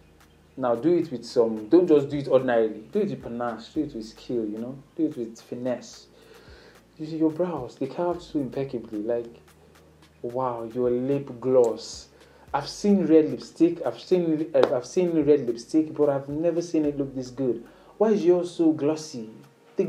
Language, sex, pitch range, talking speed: English, male, 120-160 Hz, 185 wpm